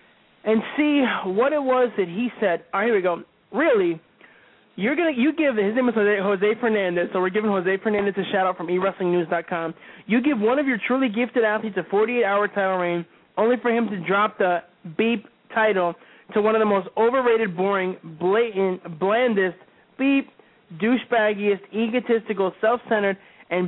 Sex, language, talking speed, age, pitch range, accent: male, English, 170 wpm, 20-39, 200-265 Hz, American